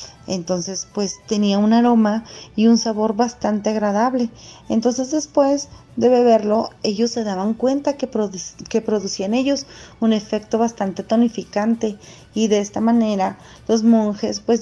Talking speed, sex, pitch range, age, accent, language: 135 wpm, female, 185-220 Hz, 30-49, Mexican, Spanish